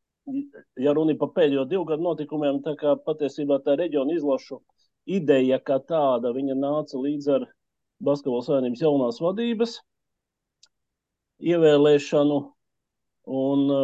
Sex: male